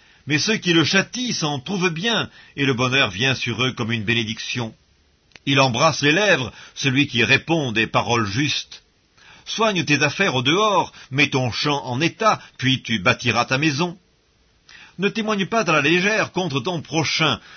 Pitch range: 125-175 Hz